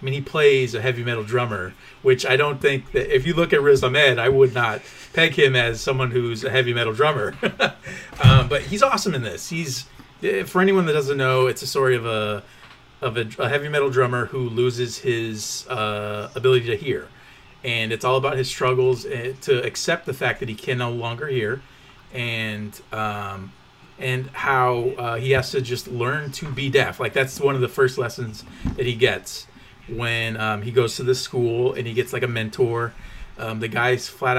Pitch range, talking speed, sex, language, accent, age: 115-135 Hz, 205 wpm, male, English, American, 30-49